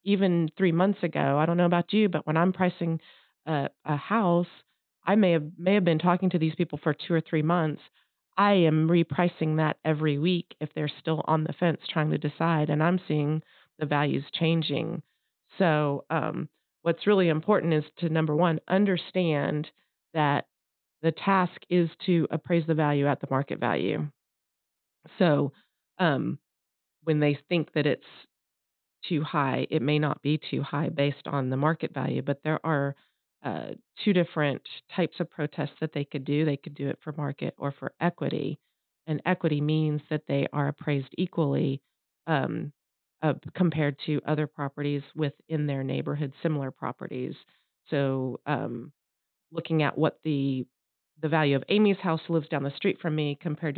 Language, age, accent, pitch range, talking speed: English, 40-59, American, 145-170 Hz, 170 wpm